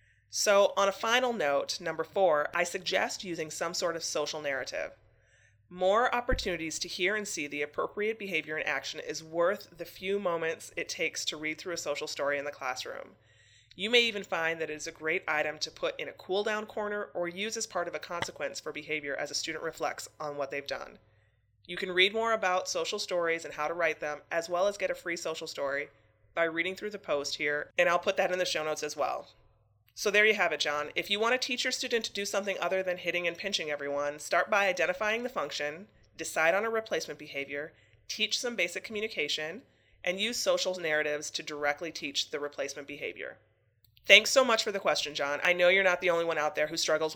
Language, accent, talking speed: English, American, 225 wpm